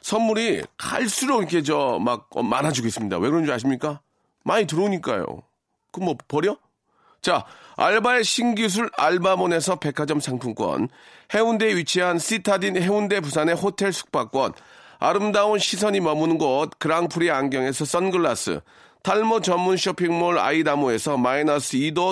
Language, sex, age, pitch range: Korean, male, 40-59, 155-200 Hz